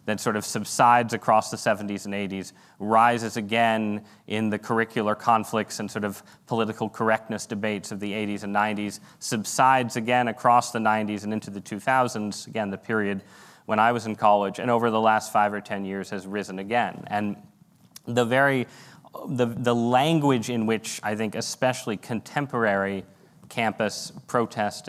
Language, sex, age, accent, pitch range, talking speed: English, male, 30-49, American, 100-115 Hz, 160 wpm